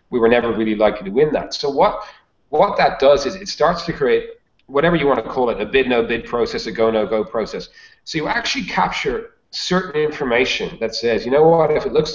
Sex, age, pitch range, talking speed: male, 40-59, 115-160 Hz, 235 wpm